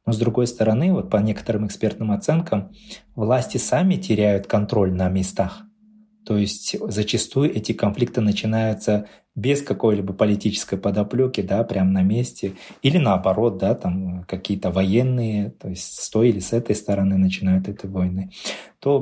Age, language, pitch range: 20-39, Russian, 100-120 Hz